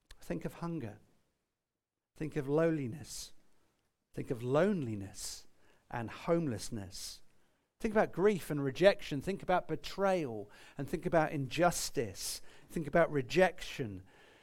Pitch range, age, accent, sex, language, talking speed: 115-170 Hz, 50-69, British, male, English, 110 wpm